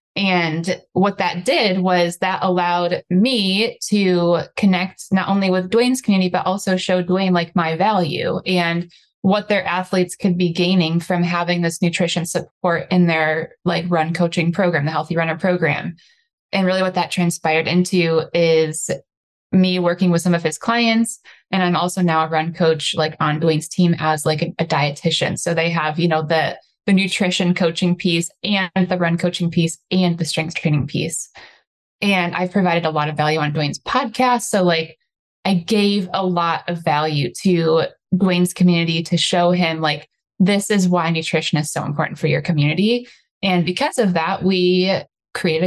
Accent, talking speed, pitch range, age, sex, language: American, 175 wpm, 165-190 Hz, 20-39, female, English